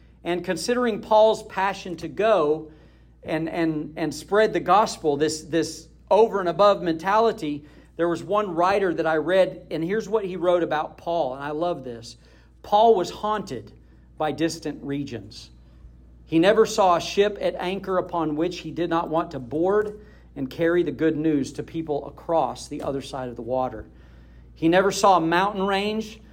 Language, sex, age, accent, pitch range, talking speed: English, male, 50-69, American, 145-190 Hz, 175 wpm